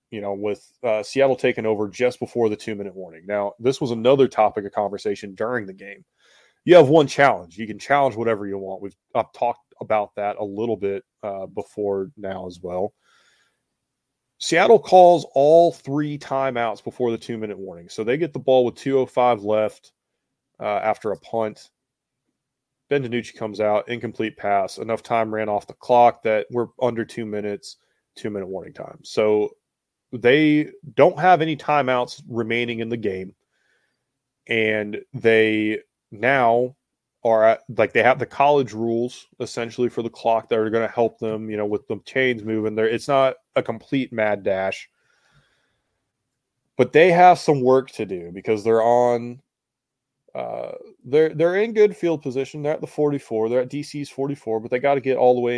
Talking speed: 175 wpm